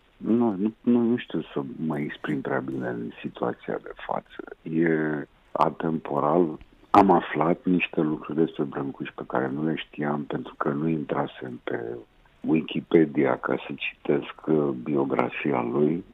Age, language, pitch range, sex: 50-69, Romanian, 75-95 Hz, male